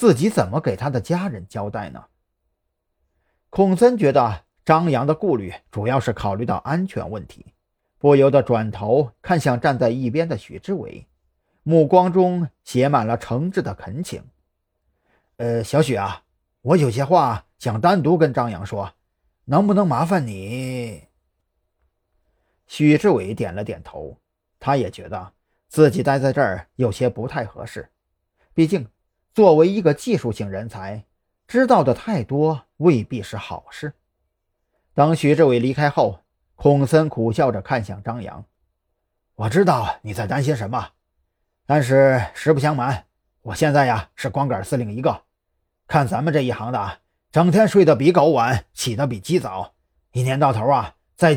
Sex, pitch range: male, 100-155 Hz